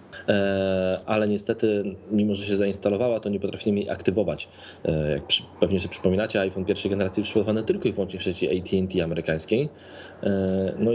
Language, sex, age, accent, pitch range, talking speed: Polish, male, 20-39, native, 95-110 Hz, 150 wpm